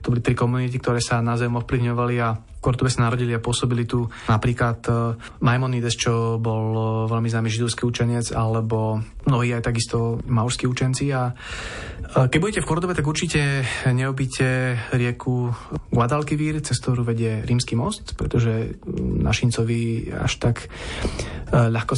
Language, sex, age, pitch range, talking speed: Slovak, male, 20-39, 110-125 Hz, 135 wpm